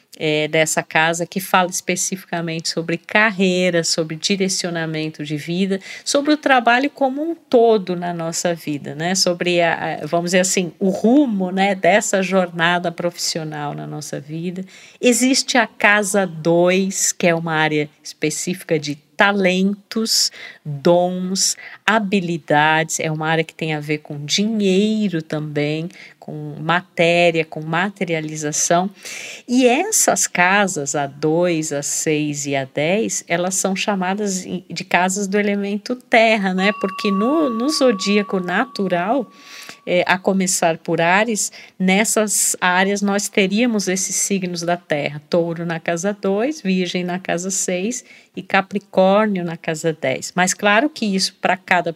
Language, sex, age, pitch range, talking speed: Portuguese, female, 50-69, 165-205 Hz, 135 wpm